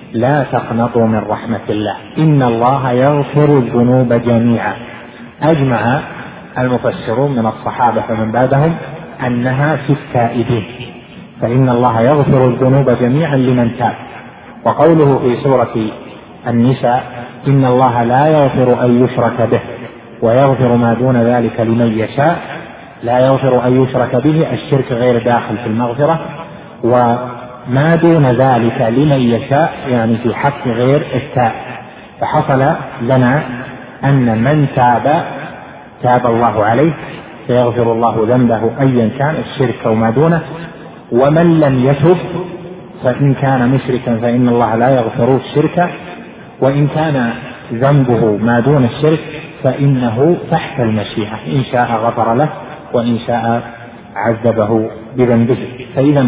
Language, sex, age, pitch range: Arabic, male, 30-49, 120-140 Hz